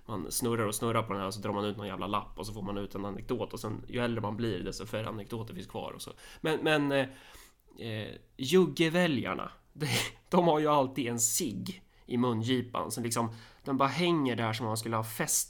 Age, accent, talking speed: 20-39, native, 230 wpm